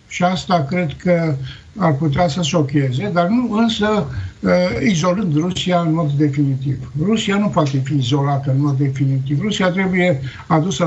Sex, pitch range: male, 140-185 Hz